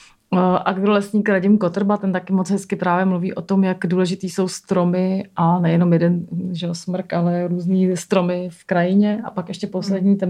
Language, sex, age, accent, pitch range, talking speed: Czech, female, 30-49, native, 180-195 Hz, 185 wpm